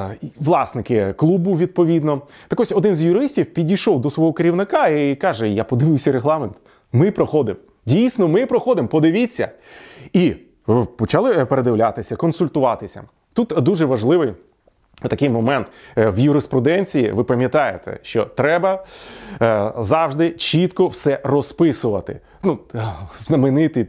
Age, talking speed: 30-49, 110 wpm